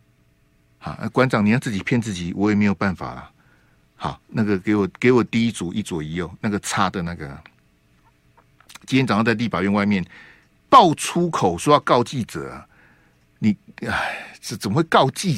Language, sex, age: Chinese, male, 60-79